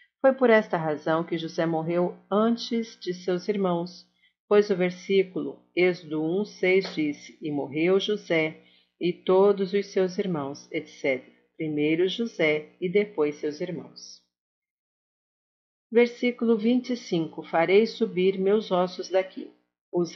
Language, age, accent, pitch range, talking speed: Portuguese, 50-69, Brazilian, 160-200 Hz, 120 wpm